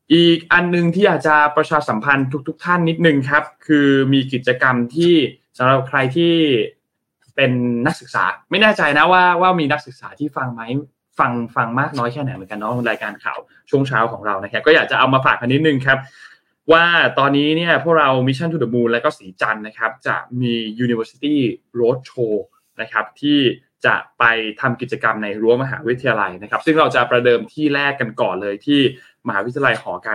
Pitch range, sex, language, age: 115-150 Hz, male, Thai, 20-39